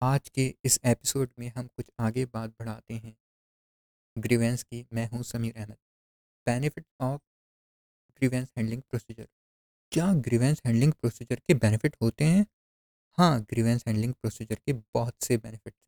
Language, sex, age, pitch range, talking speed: Hindi, male, 20-39, 110-145 Hz, 145 wpm